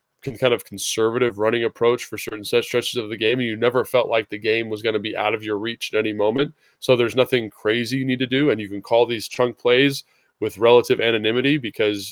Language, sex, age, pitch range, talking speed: English, male, 20-39, 110-140 Hz, 245 wpm